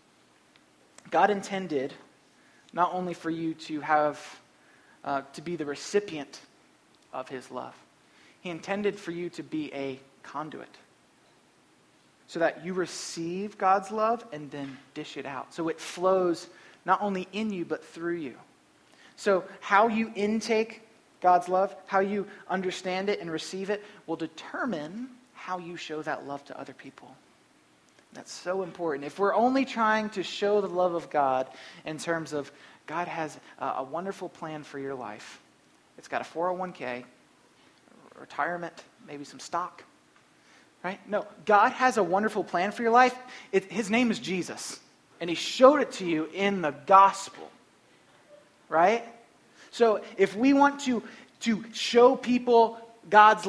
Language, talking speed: English, 150 wpm